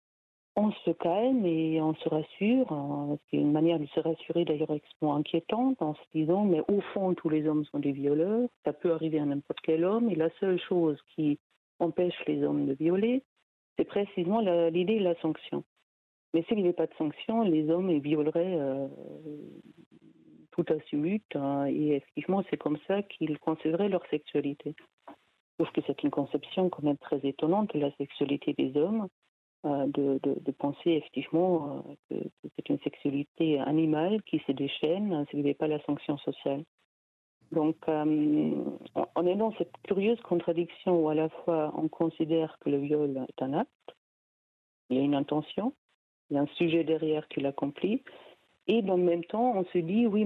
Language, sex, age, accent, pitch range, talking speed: French, female, 50-69, French, 150-180 Hz, 185 wpm